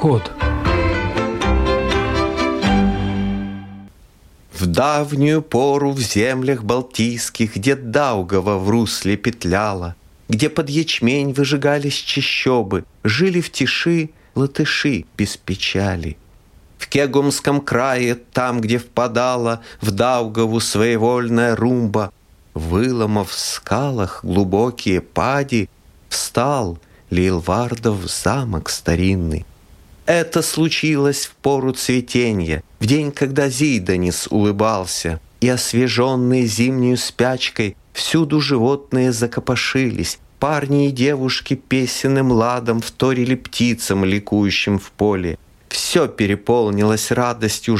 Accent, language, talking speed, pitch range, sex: native, Russian, 90 wpm, 95-130 Hz, male